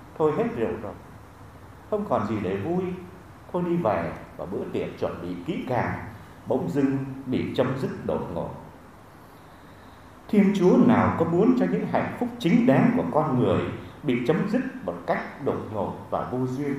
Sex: male